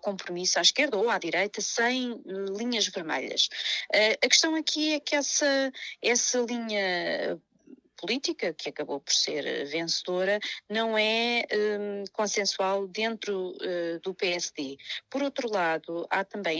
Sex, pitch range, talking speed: female, 175-220 Hz, 125 wpm